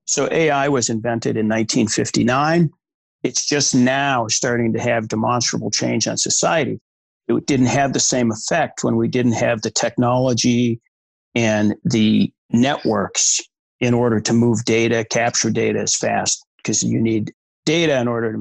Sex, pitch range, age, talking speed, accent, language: male, 115-145 Hz, 50-69, 155 wpm, American, English